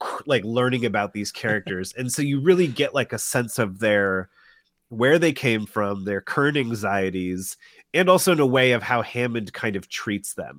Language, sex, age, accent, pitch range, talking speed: English, male, 30-49, American, 100-130 Hz, 195 wpm